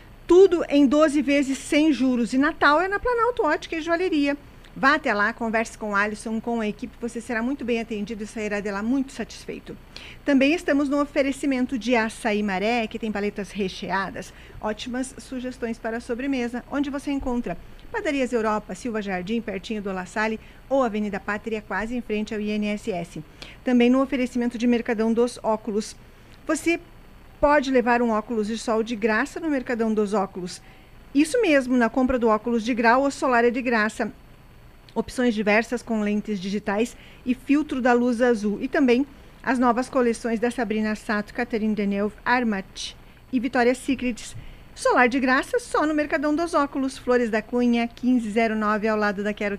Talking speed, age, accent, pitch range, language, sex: 170 wpm, 40-59, Brazilian, 215-265 Hz, Portuguese, female